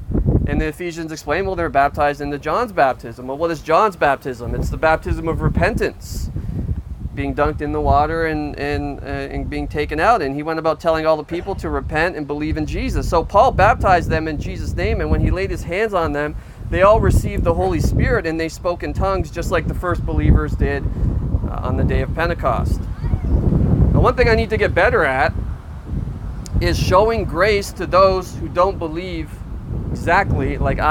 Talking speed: 200 wpm